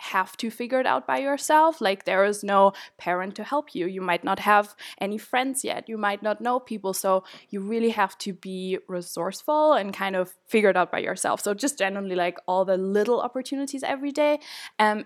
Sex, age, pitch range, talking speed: female, 10-29, 185-230 Hz, 210 wpm